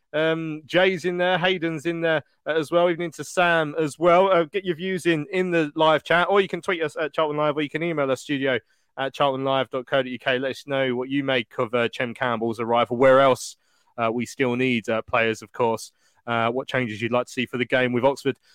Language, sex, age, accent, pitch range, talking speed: English, male, 20-39, British, 135-175 Hz, 235 wpm